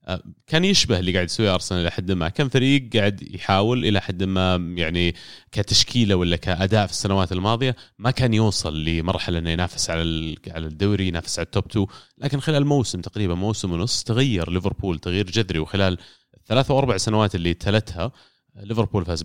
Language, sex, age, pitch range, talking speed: Arabic, male, 30-49, 90-115 Hz, 170 wpm